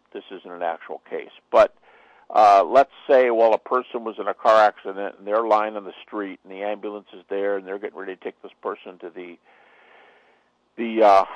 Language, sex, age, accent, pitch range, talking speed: English, male, 50-69, American, 105-140 Hz, 210 wpm